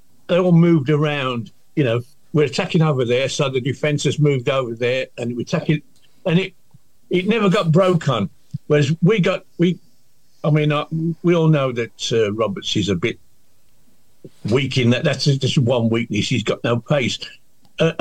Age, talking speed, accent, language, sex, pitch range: 50-69, 180 wpm, British, English, male, 135-180 Hz